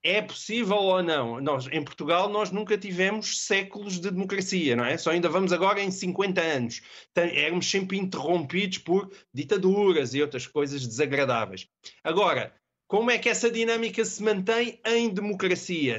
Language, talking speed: Portuguese, 150 wpm